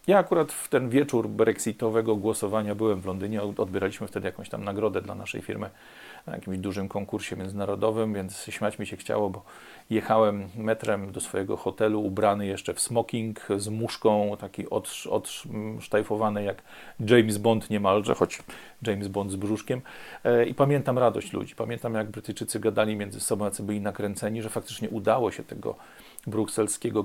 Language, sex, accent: Polish, male, native